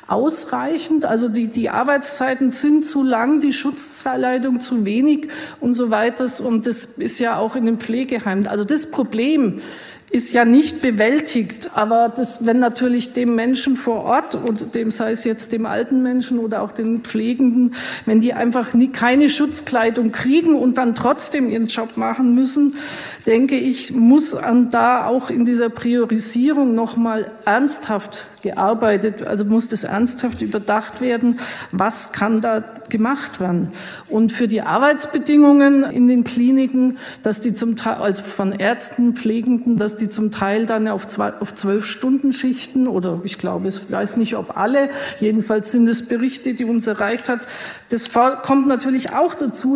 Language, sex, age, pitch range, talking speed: German, female, 50-69, 225-265 Hz, 160 wpm